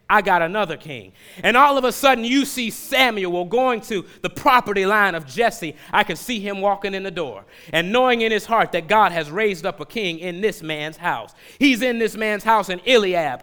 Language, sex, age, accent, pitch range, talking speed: English, male, 30-49, American, 185-230 Hz, 225 wpm